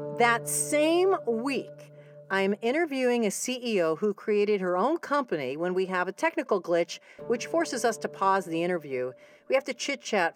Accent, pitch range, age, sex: American, 175-275 Hz, 50-69, female